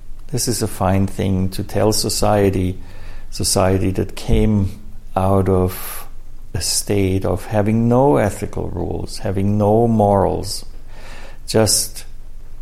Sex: male